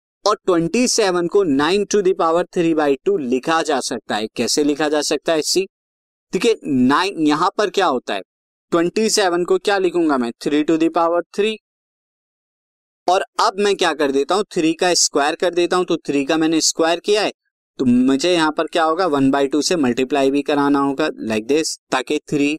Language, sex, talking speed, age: Hindi, male, 195 wpm, 20-39